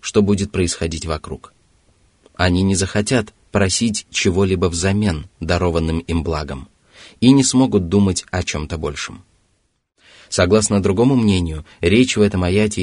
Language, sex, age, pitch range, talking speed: Russian, male, 20-39, 85-105 Hz, 125 wpm